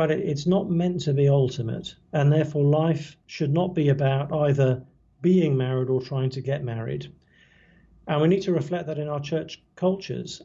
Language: English